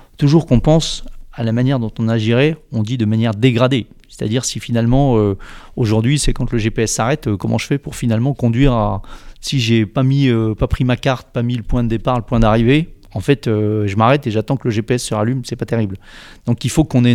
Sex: male